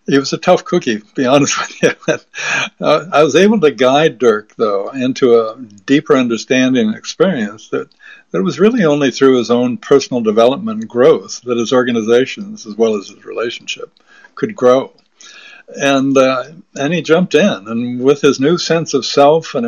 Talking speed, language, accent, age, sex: 185 wpm, English, American, 60-79, male